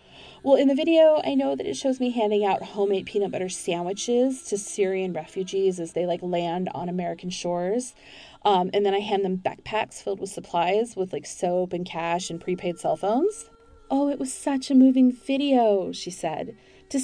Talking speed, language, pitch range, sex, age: 195 wpm, English, 180-255 Hz, female, 30-49